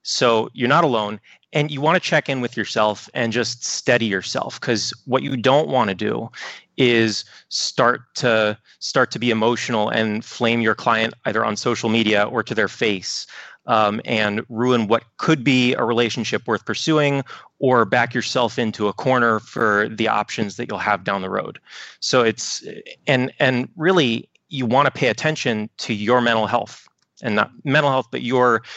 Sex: male